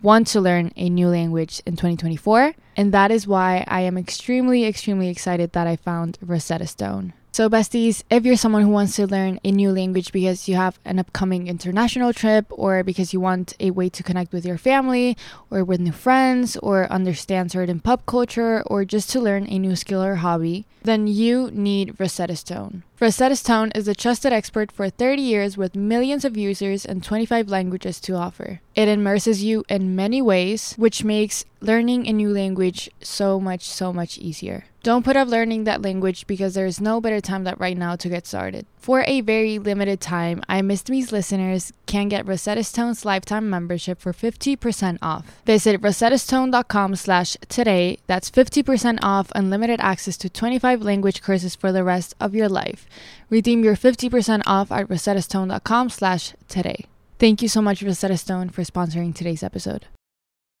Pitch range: 180-225 Hz